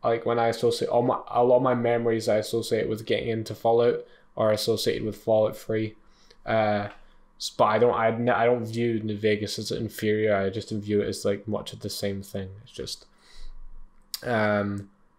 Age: 10-29